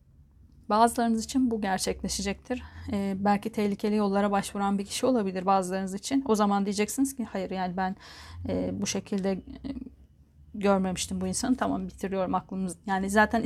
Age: 30-49